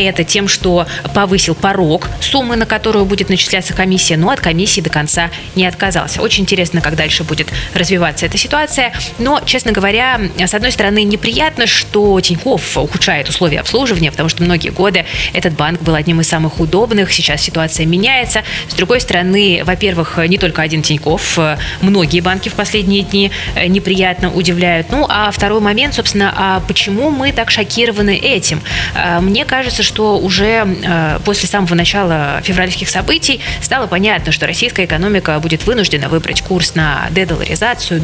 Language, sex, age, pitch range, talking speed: Russian, female, 20-39, 165-205 Hz, 155 wpm